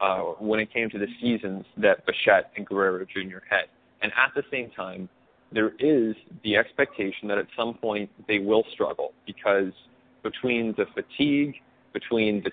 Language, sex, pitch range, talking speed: English, male, 100-120 Hz, 170 wpm